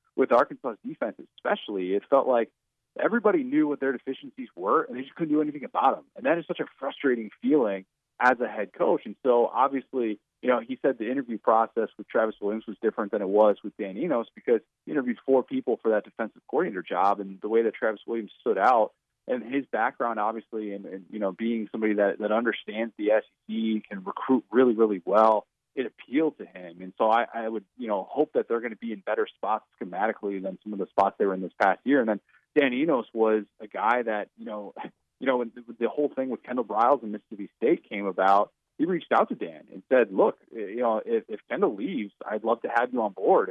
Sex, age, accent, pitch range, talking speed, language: male, 30-49, American, 105-135 Hz, 230 wpm, English